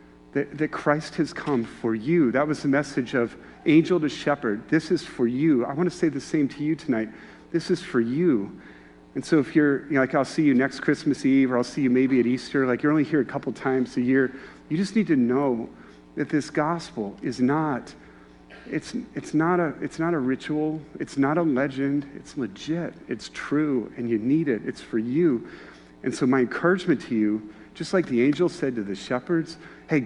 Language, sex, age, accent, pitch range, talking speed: English, male, 40-59, American, 120-150 Hz, 215 wpm